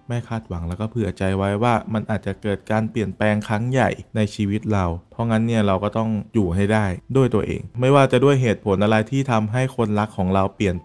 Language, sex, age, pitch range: Thai, male, 20-39, 95-115 Hz